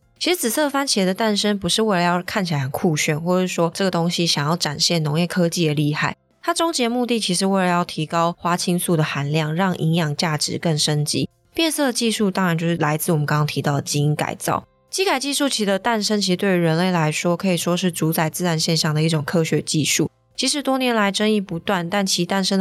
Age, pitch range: 20-39, 160-195 Hz